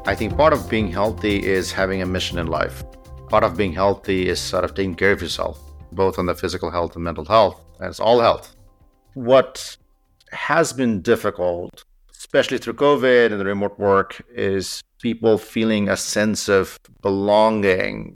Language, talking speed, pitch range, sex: English, 175 wpm, 95-115 Hz, male